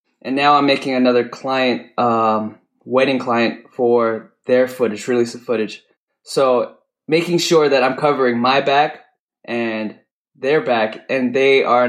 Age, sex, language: 10-29, male, English